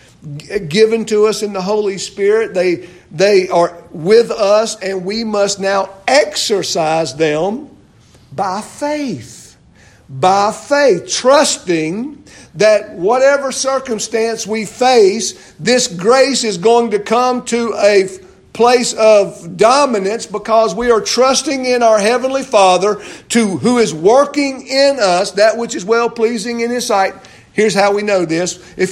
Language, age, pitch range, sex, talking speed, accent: English, 50-69, 185-235 Hz, male, 135 wpm, American